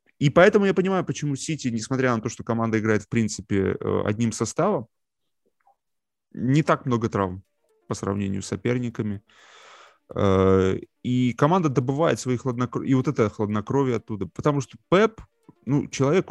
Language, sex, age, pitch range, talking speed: Russian, male, 20-39, 100-125 Hz, 145 wpm